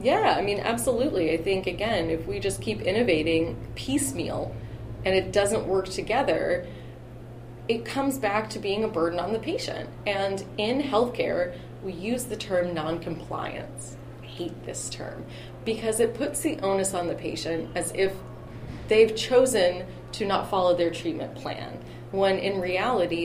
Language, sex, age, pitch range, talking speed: English, female, 30-49, 160-205 Hz, 155 wpm